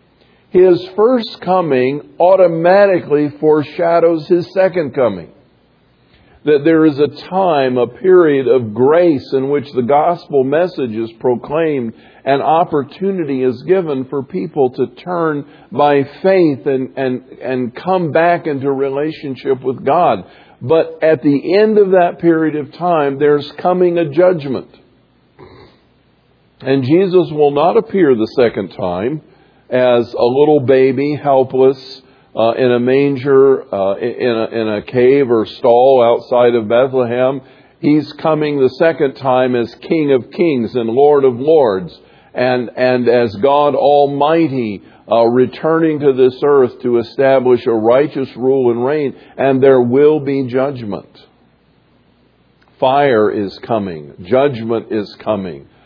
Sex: male